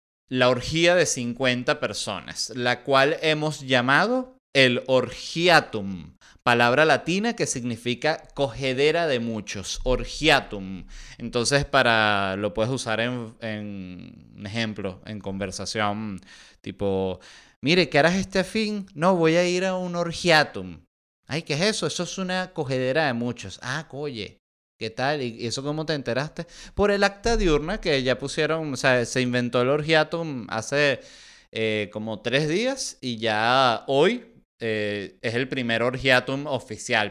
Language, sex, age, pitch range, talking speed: Spanish, male, 30-49, 110-150 Hz, 140 wpm